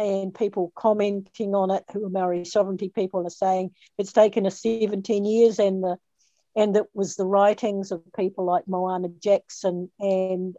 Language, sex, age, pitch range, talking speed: English, female, 50-69, 185-215 Hz, 170 wpm